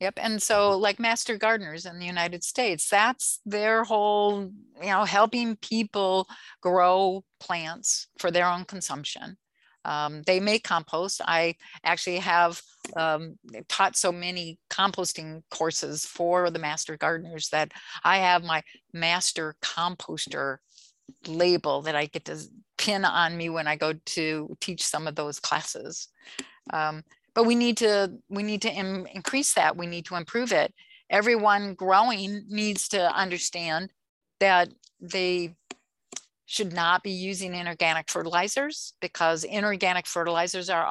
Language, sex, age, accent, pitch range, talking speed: English, female, 50-69, American, 170-210 Hz, 140 wpm